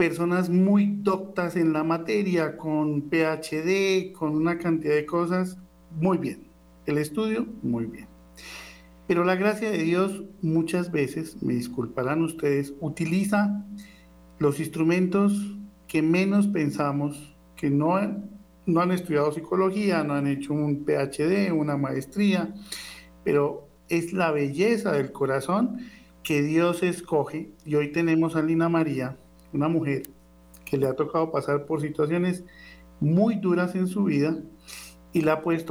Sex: male